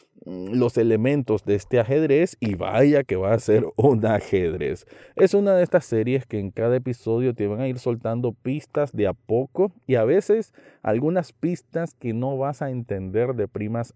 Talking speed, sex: 185 wpm, male